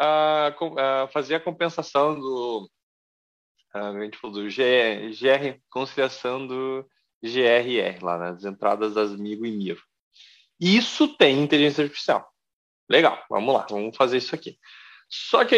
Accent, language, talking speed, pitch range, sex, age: Brazilian, Portuguese, 110 wpm, 115-180 Hz, male, 20-39